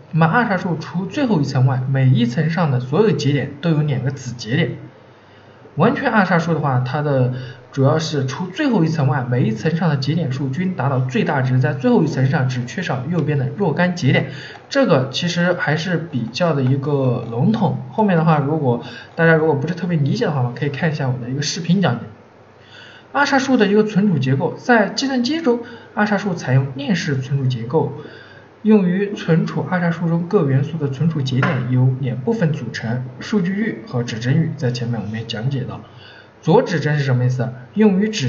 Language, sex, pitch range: Chinese, male, 130-185 Hz